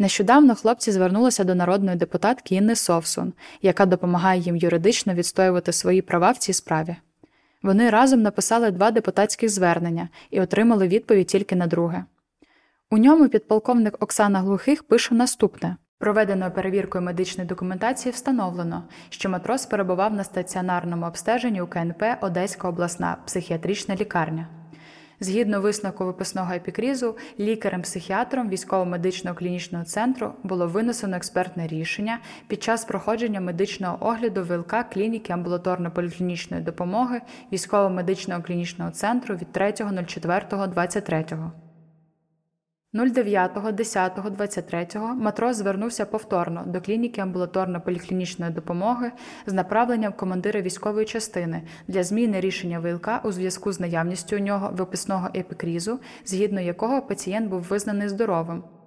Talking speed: 115 wpm